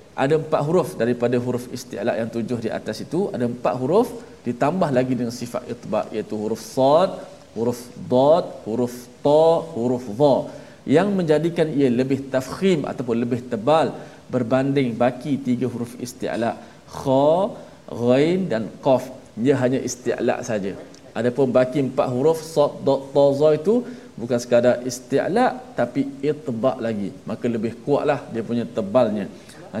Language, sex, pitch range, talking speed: Malayalam, male, 125-165 Hz, 145 wpm